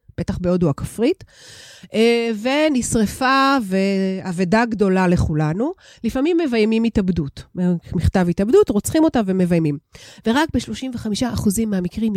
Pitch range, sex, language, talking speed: 190-275 Hz, female, Hebrew, 90 wpm